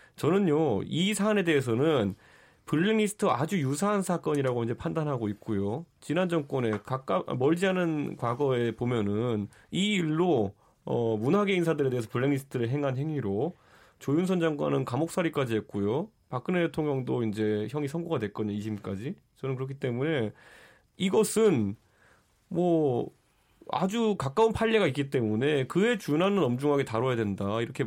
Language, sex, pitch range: Korean, male, 115-170 Hz